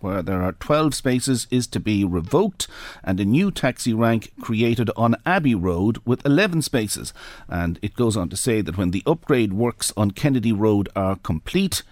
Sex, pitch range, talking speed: male, 100-120 Hz, 185 wpm